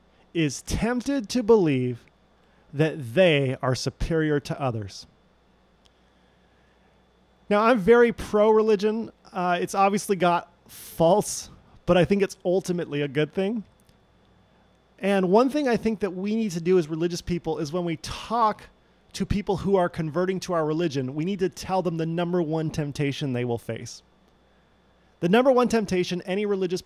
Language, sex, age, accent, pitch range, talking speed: English, male, 30-49, American, 140-195 Hz, 155 wpm